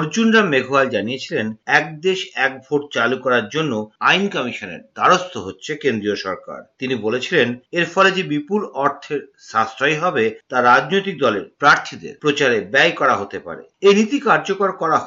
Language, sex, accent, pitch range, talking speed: Bengali, male, native, 160-240 Hz, 145 wpm